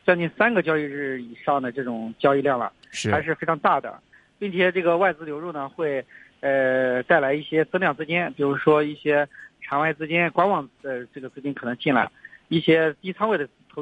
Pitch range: 135-175 Hz